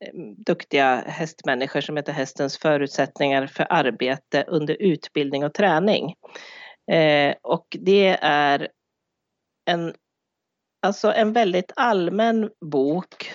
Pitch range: 145-195 Hz